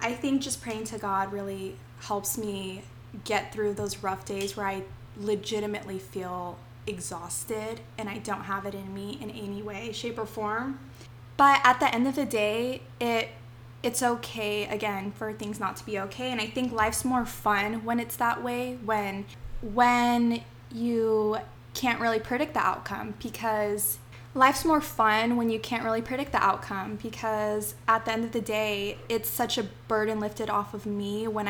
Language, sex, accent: English, female, American